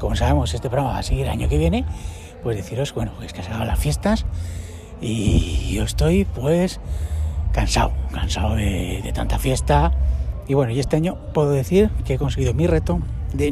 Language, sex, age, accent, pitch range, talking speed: Spanish, male, 60-79, Spanish, 90-145 Hz, 190 wpm